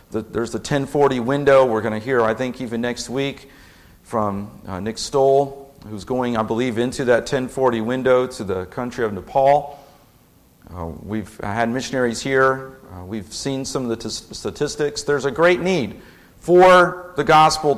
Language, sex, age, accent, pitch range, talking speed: English, male, 50-69, American, 115-140 Hz, 165 wpm